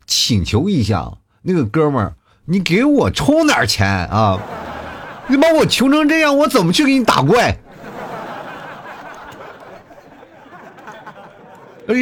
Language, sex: Chinese, male